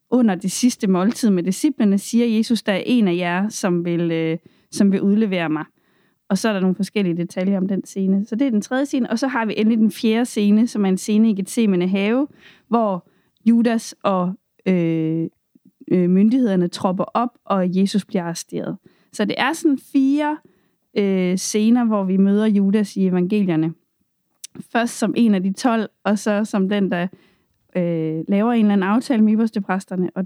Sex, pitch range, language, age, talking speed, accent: female, 185-240 Hz, Danish, 30-49, 185 wpm, native